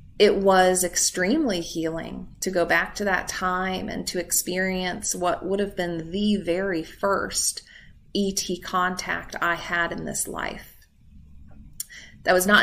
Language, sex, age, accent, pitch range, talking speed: English, female, 30-49, American, 160-210 Hz, 145 wpm